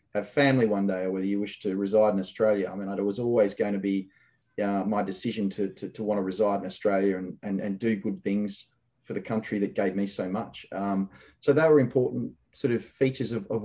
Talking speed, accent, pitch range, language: 240 wpm, Australian, 100-120 Hz, English